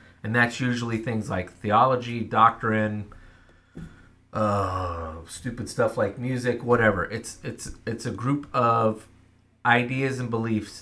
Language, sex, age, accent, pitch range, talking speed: English, male, 30-49, American, 95-120 Hz, 120 wpm